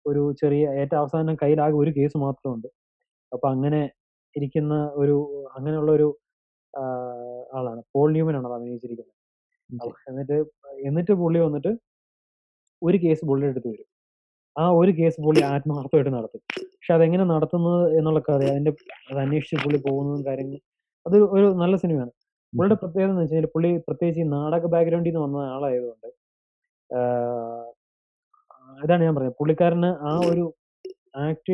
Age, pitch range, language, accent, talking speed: 20-39, 135-165 Hz, English, Indian, 110 wpm